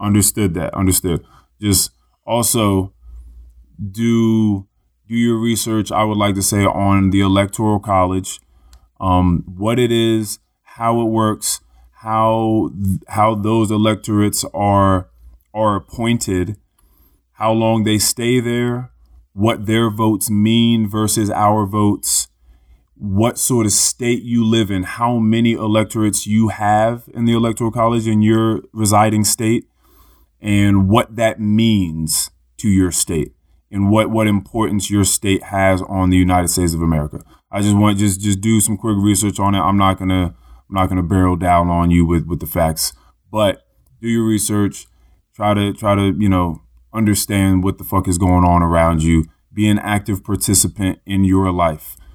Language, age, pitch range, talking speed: English, 20-39, 90-110 Hz, 160 wpm